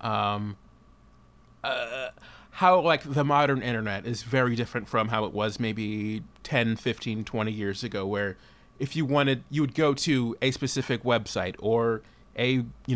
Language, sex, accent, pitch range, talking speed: English, male, American, 110-125 Hz, 155 wpm